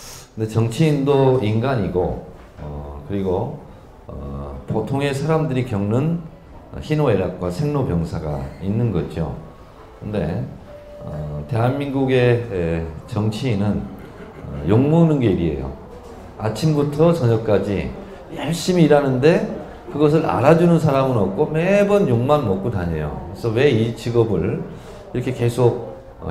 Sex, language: male, Korean